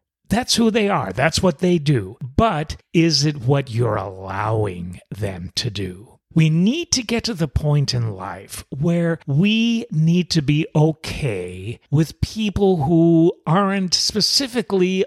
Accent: American